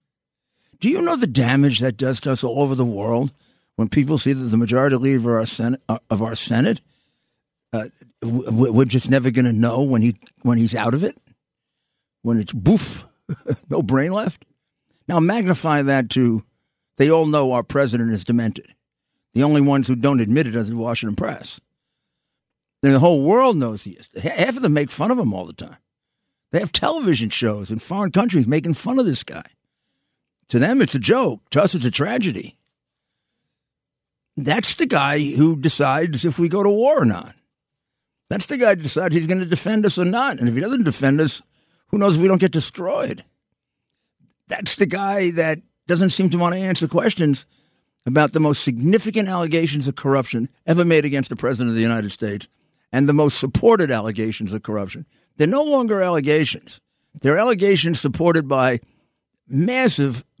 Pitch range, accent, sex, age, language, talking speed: 120-170 Hz, American, male, 50-69, English, 185 wpm